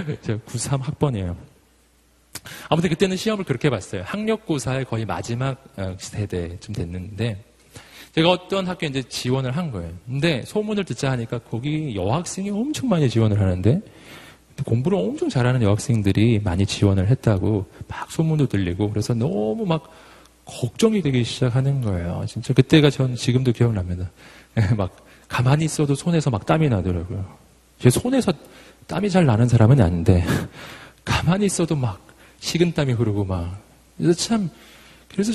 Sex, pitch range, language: male, 105-150 Hz, Korean